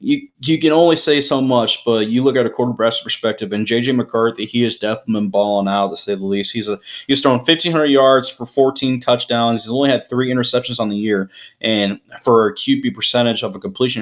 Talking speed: 225 wpm